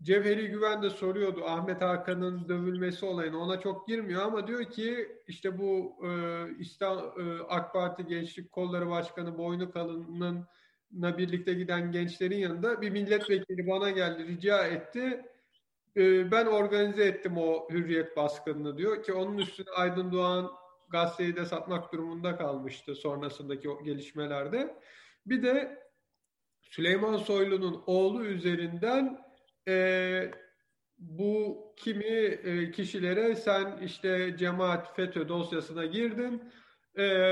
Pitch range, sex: 175-210 Hz, male